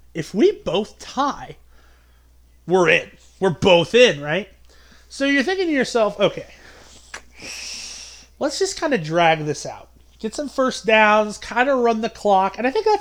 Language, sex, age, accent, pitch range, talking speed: English, male, 30-49, American, 160-270 Hz, 165 wpm